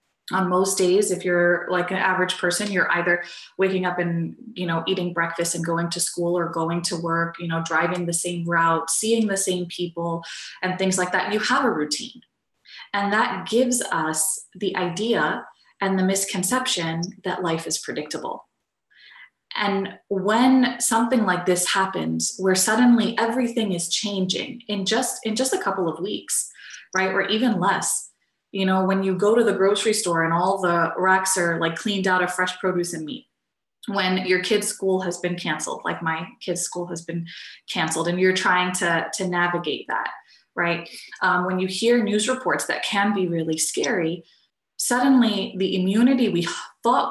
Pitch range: 175-210 Hz